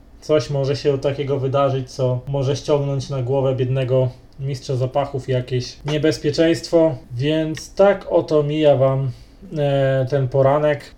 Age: 20-39